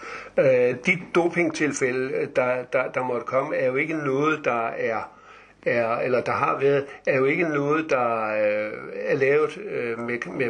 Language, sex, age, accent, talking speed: Danish, male, 50-69, native, 170 wpm